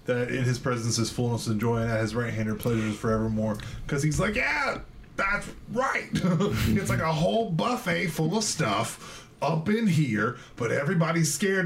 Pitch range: 115-175 Hz